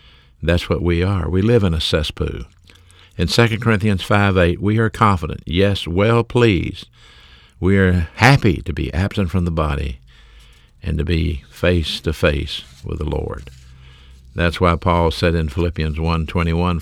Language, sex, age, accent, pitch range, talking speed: English, male, 60-79, American, 80-100 Hz, 165 wpm